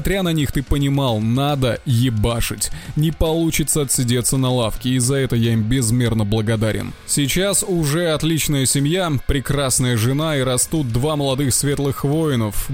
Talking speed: 145 wpm